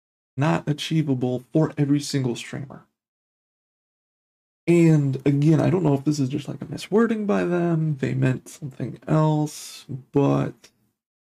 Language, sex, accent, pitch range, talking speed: English, male, American, 125-150 Hz, 135 wpm